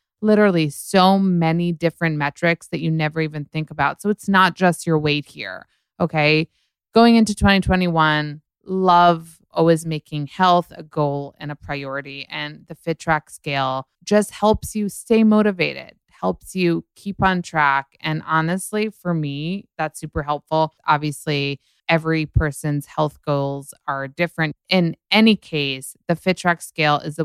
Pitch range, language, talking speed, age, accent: 145-185 Hz, English, 150 wpm, 20-39, American